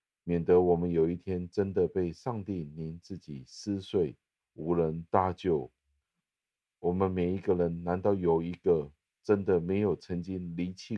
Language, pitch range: Chinese, 80-95 Hz